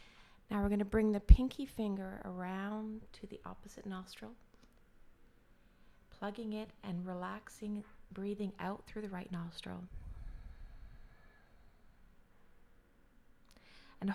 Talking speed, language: 100 wpm, English